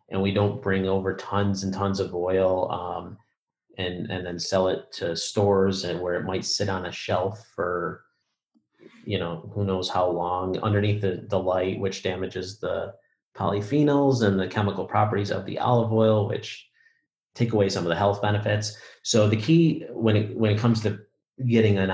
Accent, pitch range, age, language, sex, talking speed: American, 95-110 Hz, 30-49, English, male, 185 wpm